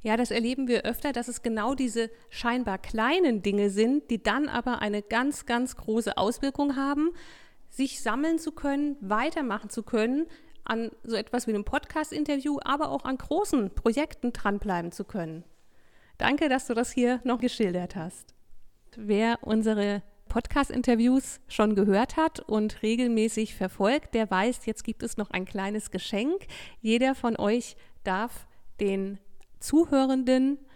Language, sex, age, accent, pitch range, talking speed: German, female, 50-69, German, 210-265 Hz, 145 wpm